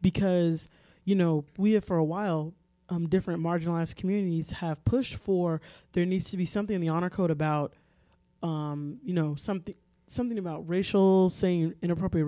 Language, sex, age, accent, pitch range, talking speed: English, male, 20-39, American, 165-200 Hz, 165 wpm